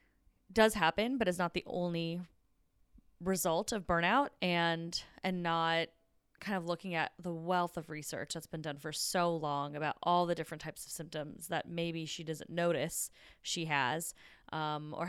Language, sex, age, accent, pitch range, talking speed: English, female, 20-39, American, 160-190 Hz, 170 wpm